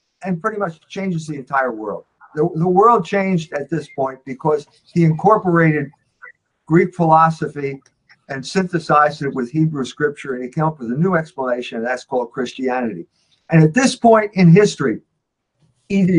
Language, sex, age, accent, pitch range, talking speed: English, male, 50-69, American, 145-185 Hz, 165 wpm